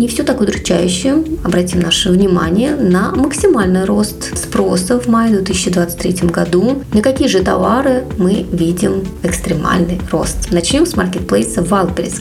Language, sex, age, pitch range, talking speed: Russian, female, 20-39, 180-240 Hz, 135 wpm